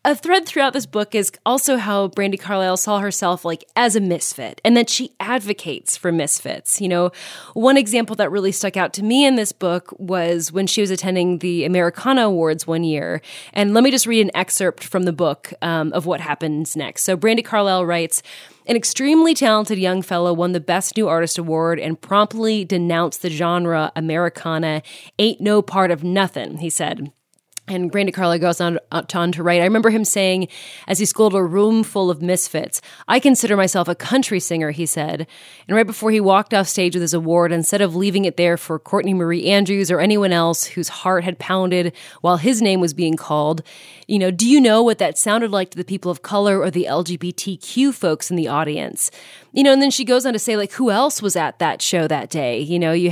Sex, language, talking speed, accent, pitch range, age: female, English, 215 wpm, American, 175-215 Hz, 20-39